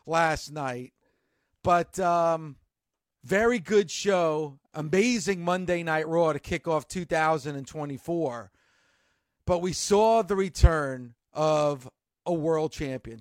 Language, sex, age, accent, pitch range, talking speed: English, male, 40-59, American, 155-200 Hz, 110 wpm